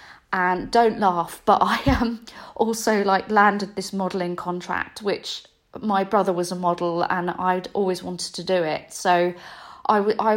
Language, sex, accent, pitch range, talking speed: English, female, British, 180-215 Hz, 170 wpm